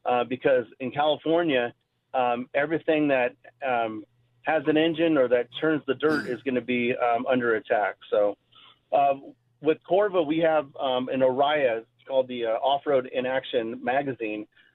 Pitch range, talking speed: 125-160 Hz, 160 wpm